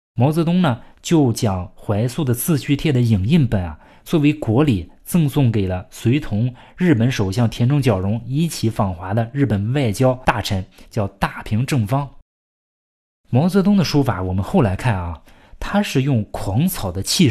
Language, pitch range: Chinese, 100-135 Hz